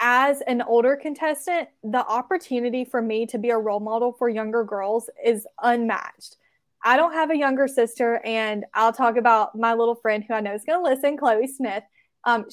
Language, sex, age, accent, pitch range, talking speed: English, female, 20-39, American, 220-265 Hz, 195 wpm